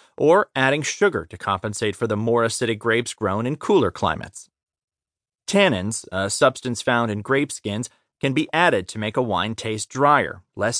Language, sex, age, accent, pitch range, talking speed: English, male, 30-49, American, 105-145 Hz, 170 wpm